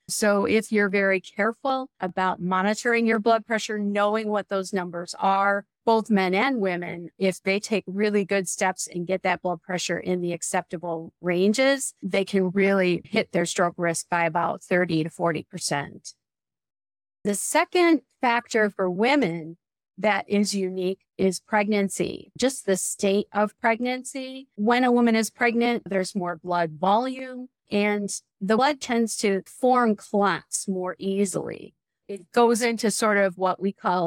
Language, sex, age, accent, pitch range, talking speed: English, female, 40-59, American, 180-220 Hz, 155 wpm